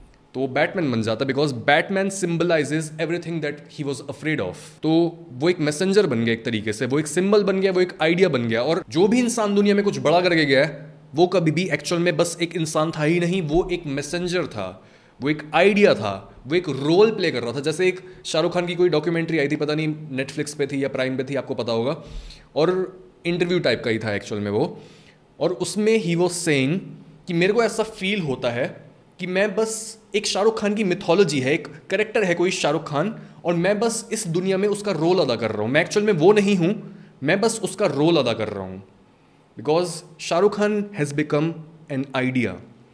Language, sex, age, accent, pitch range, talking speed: Hindi, male, 20-39, native, 145-190 Hz, 225 wpm